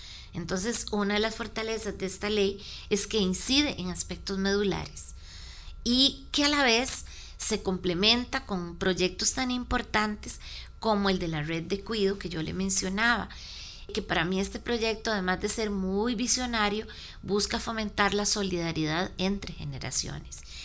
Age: 30-49